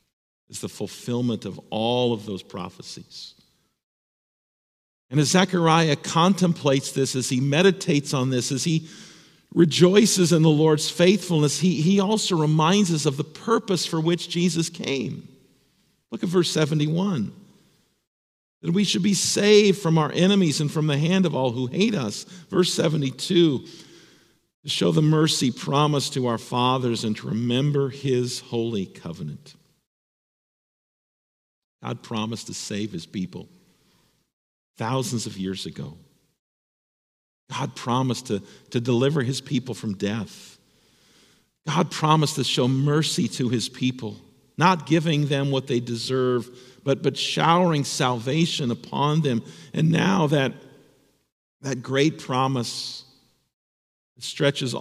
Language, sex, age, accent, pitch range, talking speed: English, male, 50-69, American, 125-165 Hz, 130 wpm